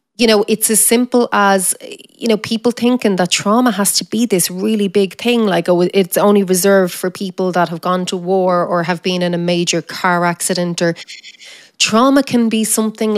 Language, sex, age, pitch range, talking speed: English, female, 30-49, 170-195 Hz, 200 wpm